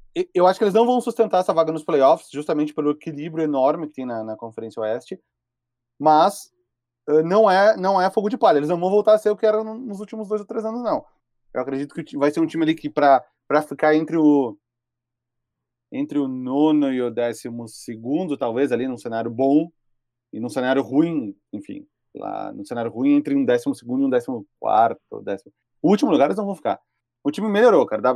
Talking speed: 210 wpm